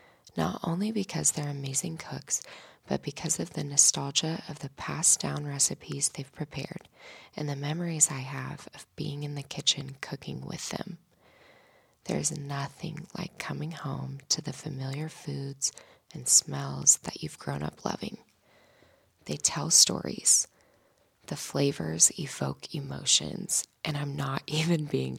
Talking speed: 140 wpm